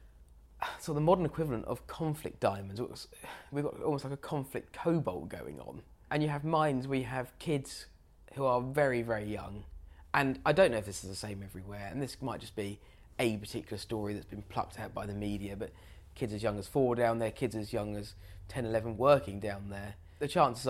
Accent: British